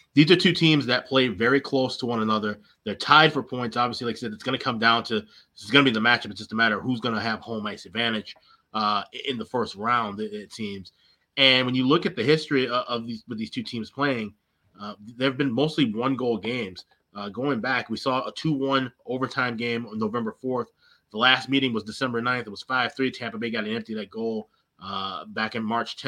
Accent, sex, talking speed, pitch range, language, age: American, male, 240 wpm, 110-130 Hz, English, 20-39